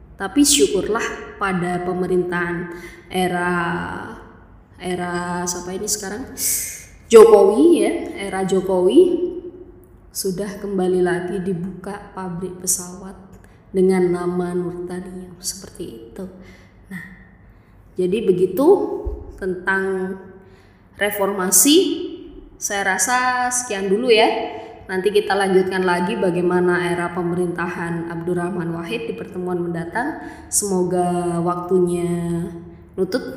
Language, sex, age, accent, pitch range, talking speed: English, female, 20-39, Indonesian, 175-200 Hz, 90 wpm